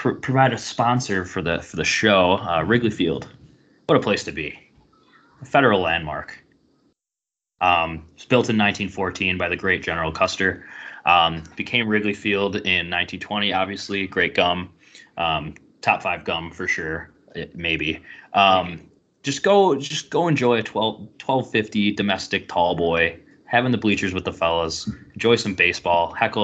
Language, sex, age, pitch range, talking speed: English, male, 20-39, 90-105 Hz, 155 wpm